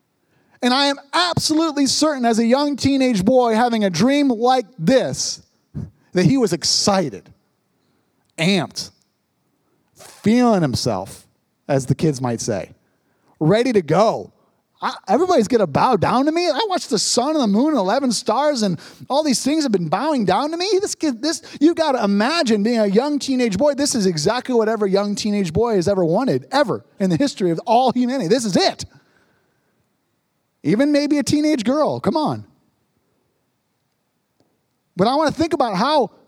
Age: 30-49